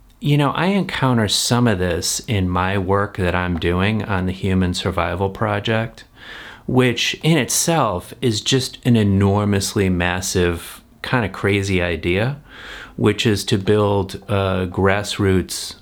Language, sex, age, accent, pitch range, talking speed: English, male, 30-49, American, 85-105 Hz, 135 wpm